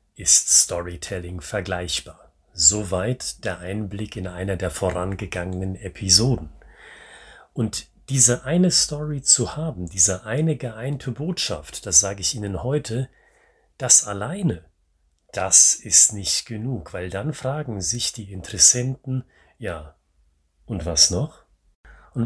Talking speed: 115 wpm